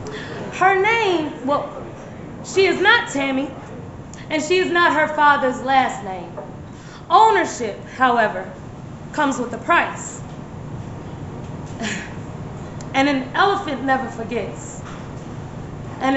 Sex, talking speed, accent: female, 100 wpm, American